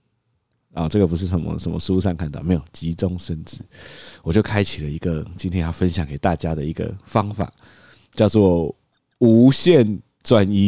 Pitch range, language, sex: 95-155 Hz, Chinese, male